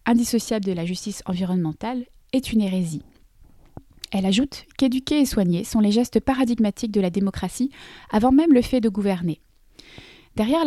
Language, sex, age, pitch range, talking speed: French, female, 30-49, 195-245 Hz, 150 wpm